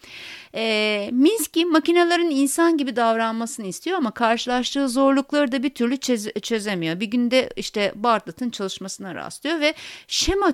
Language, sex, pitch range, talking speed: Turkish, female, 205-290 Hz, 130 wpm